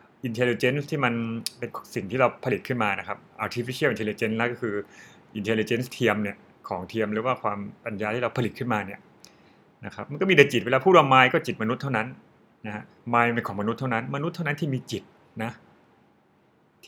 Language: Thai